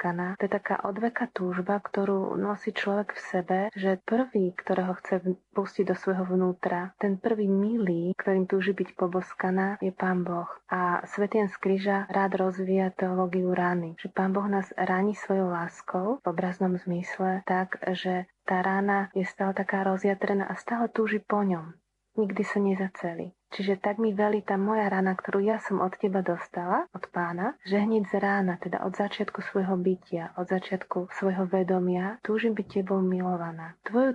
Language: Slovak